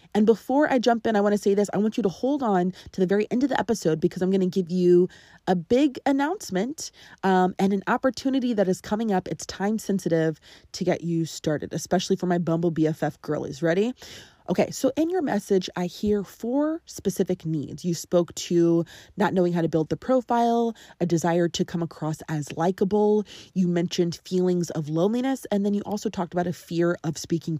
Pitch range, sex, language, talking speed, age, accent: 170-220 Hz, female, English, 210 wpm, 20-39, American